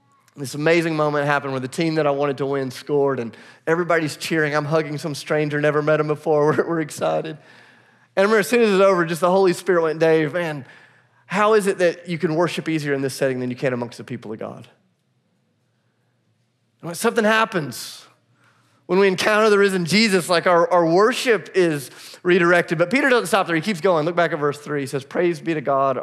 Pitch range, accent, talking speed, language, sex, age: 140-180 Hz, American, 220 wpm, English, male, 30-49